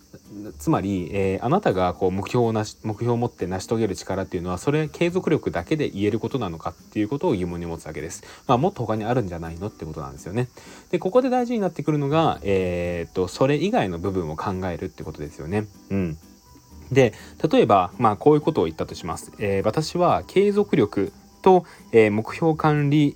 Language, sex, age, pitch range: Japanese, male, 20-39, 95-145 Hz